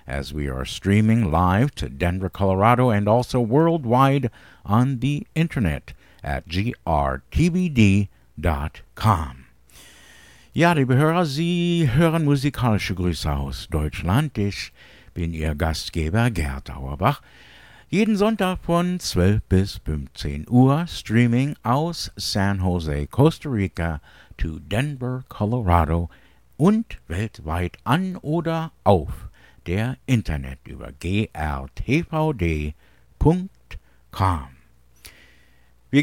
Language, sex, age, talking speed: English, male, 60-79, 95 wpm